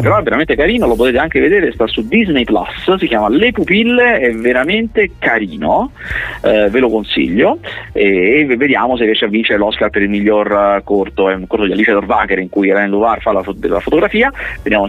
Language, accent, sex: Italian, native, male